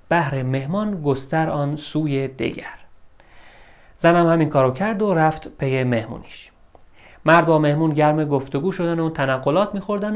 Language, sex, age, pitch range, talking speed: Persian, male, 30-49, 120-160 Hz, 135 wpm